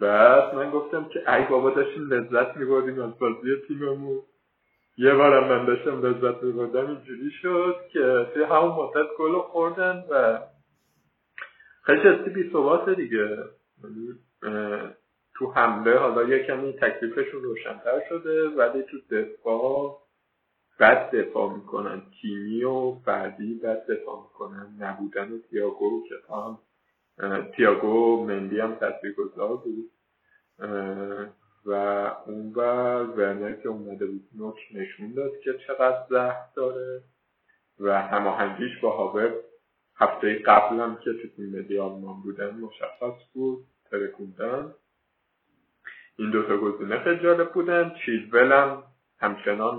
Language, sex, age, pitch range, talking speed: Persian, male, 50-69, 110-180 Hz, 115 wpm